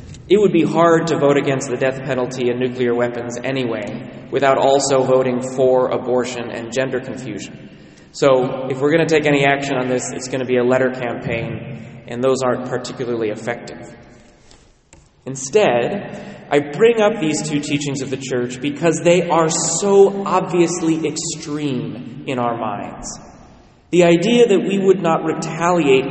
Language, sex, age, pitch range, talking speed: English, male, 30-49, 130-165 Hz, 160 wpm